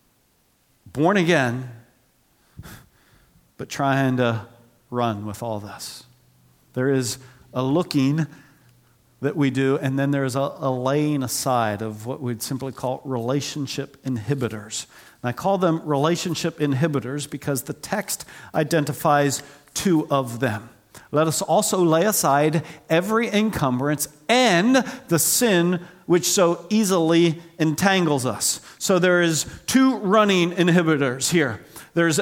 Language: English